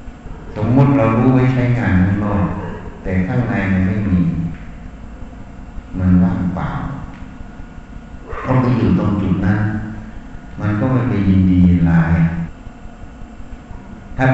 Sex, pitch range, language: male, 90-100 Hz, Thai